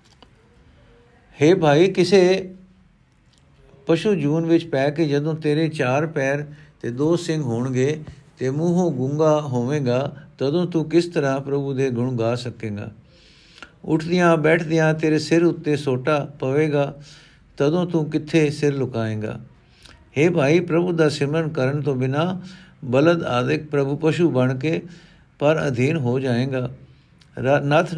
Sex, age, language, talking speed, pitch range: male, 50-69, Punjabi, 130 wpm, 130-160 Hz